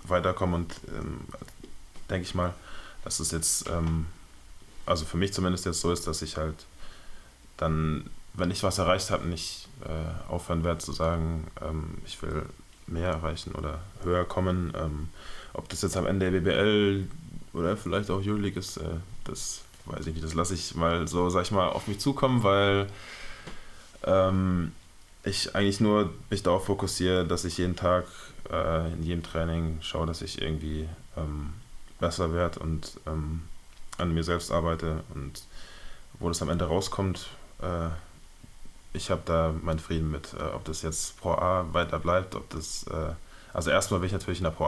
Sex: male